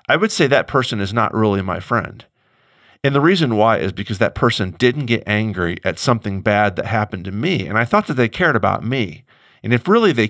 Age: 40-59